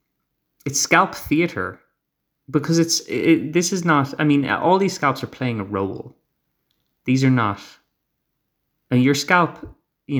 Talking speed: 160 wpm